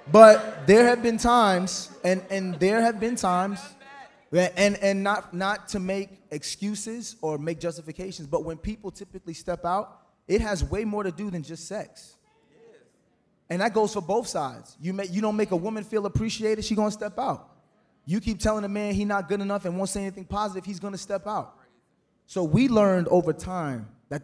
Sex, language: male, English